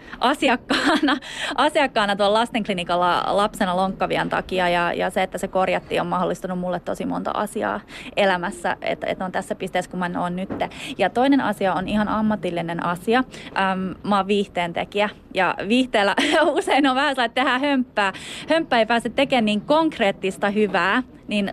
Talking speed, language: 155 wpm, Finnish